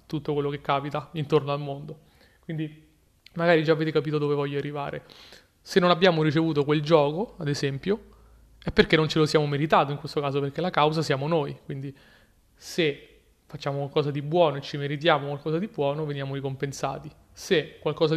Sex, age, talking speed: male, 30-49, 180 wpm